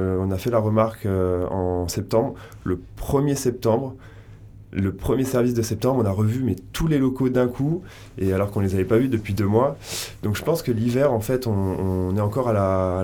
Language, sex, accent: French, male, French